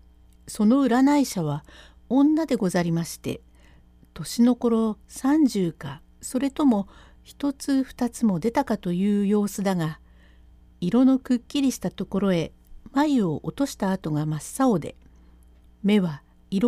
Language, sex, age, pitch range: Japanese, female, 60-79, 145-245 Hz